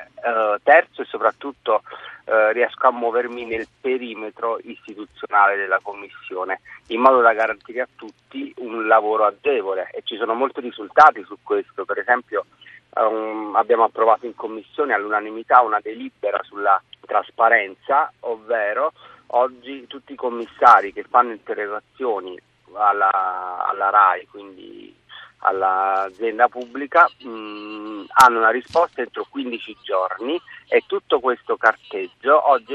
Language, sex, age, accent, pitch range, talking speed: Italian, male, 40-59, native, 110-155 Hz, 125 wpm